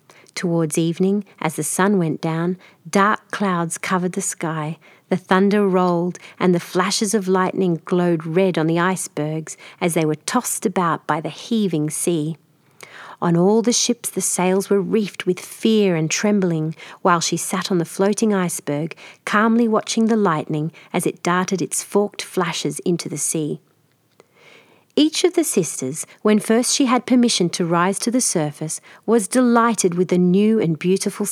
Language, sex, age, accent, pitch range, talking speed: English, female, 40-59, Australian, 165-210 Hz, 165 wpm